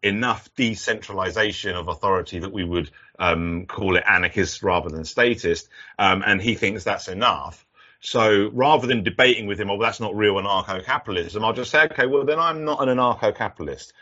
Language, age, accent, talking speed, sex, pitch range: Czech, 30-49, British, 180 wpm, male, 100-125 Hz